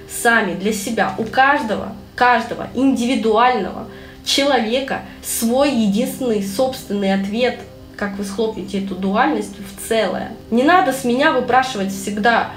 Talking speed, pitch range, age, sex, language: 120 wpm, 220-280 Hz, 20-39, female, Russian